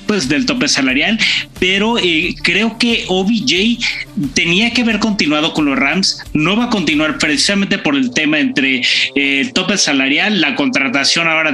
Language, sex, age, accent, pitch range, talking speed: Spanish, male, 30-49, Mexican, 175-250 Hz, 165 wpm